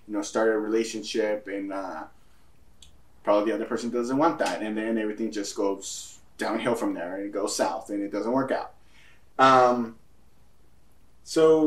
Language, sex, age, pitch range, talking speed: English, male, 20-39, 105-130 Hz, 170 wpm